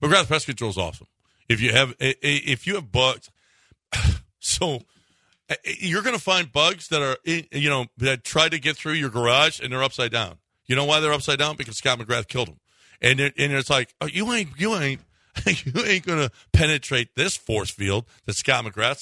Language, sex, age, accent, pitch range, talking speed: English, male, 40-59, American, 120-155 Hz, 200 wpm